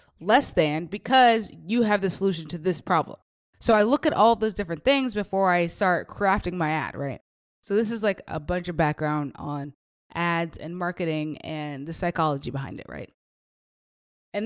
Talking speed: 185 wpm